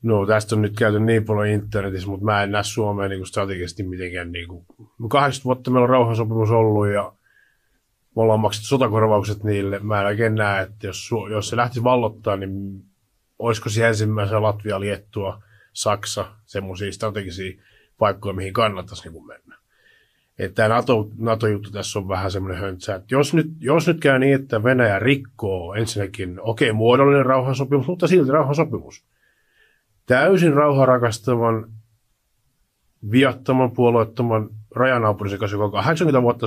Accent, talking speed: native, 140 wpm